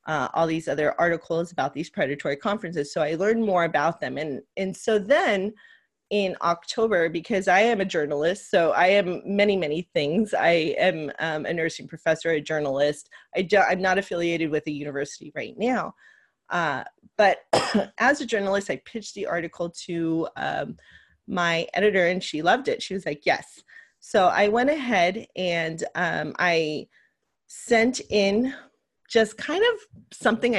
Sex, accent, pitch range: female, American, 165-220 Hz